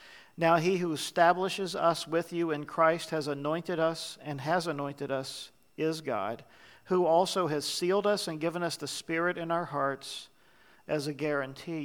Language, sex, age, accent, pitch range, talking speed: English, male, 50-69, American, 150-180 Hz, 170 wpm